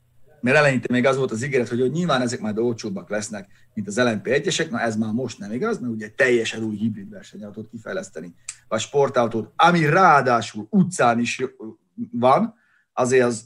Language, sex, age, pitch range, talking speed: Hungarian, male, 30-49, 110-165 Hz, 175 wpm